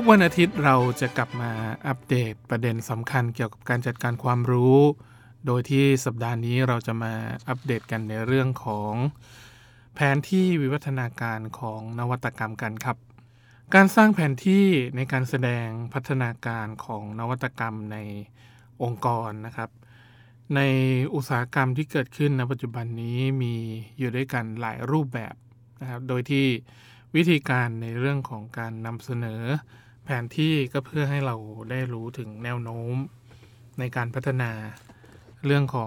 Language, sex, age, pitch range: Thai, male, 20-39, 115-135 Hz